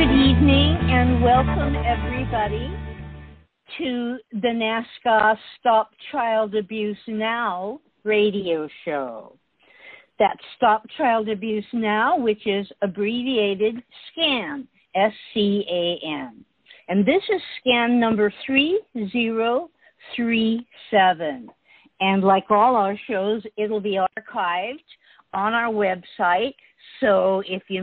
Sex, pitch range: female, 185-230 Hz